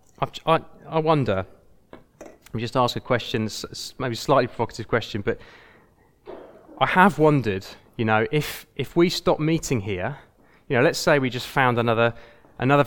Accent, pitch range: British, 105-130 Hz